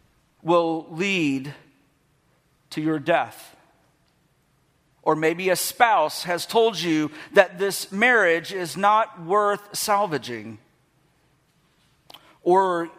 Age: 50-69